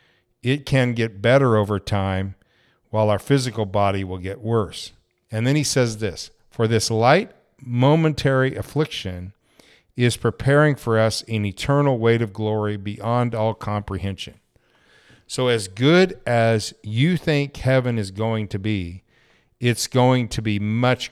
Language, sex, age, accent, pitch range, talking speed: English, male, 50-69, American, 100-130 Hz, 145 wpm